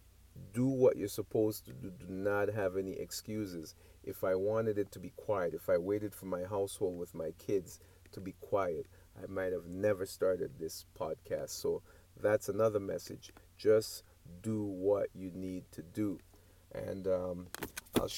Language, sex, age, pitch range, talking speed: English, male, 30-49, 90-110 Hz, 170 wpm